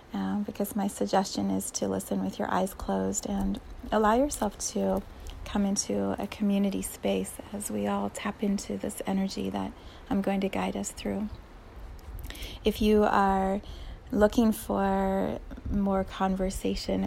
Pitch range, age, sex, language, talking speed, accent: 185-205 Hz, 30-49, female, English, 140 wpm, American